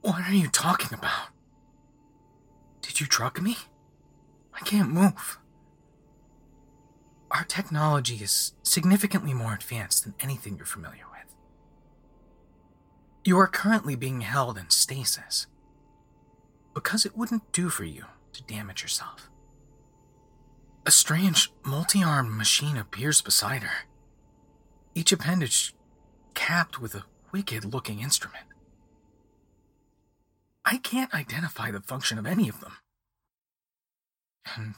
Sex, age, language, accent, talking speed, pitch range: male, 30-49, English, American, 110 wpm, 100-155 Hz